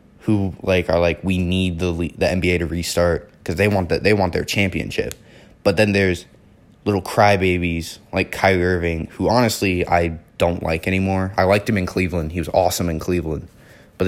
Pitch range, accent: 85-105 Hz, American